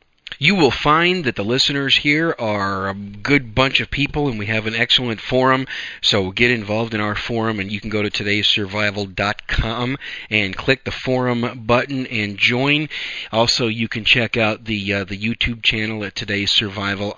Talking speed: 180 wpm